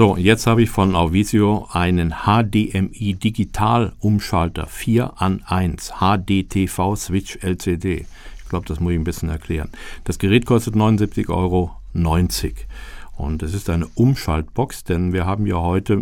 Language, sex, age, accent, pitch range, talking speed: German, male, 50-69, German, 85-105 Hz, 145 wpm